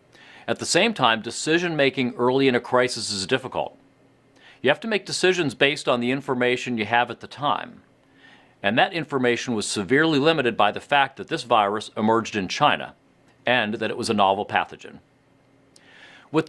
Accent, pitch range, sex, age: American, 115-140 Hz, male, 50-69